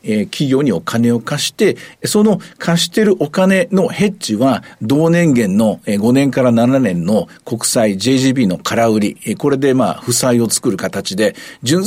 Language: Japanese